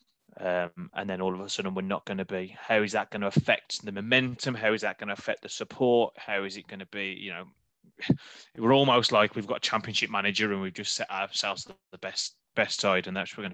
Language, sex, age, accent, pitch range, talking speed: English, male, 20-39, British, 95-110 Hz, 255 wpm